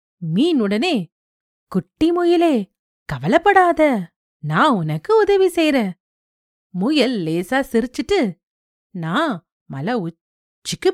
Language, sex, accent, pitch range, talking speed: Tamil, female, native, 185-305 Hz, 75 wpm